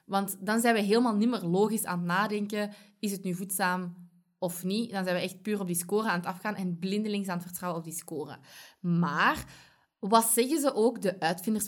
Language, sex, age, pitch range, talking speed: Dutch, female, 20-39, 180-230 Hz, 220 wpm